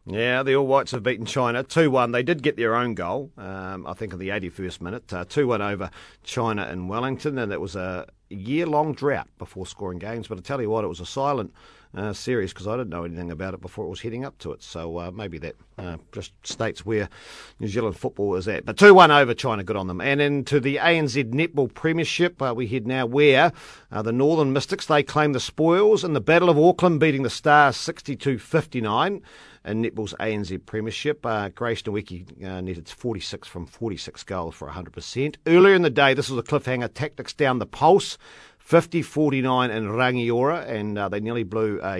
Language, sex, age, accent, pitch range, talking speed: English, male, 50-69, Australian, 95-140 Hz, 205 wpm